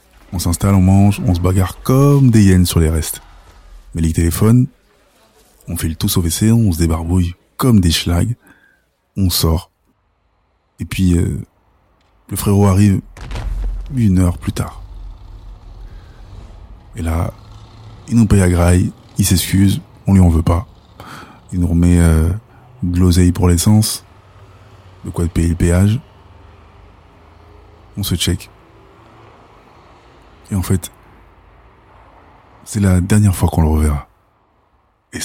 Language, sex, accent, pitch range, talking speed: French, male, French, 85-100 Hz, 135 wpm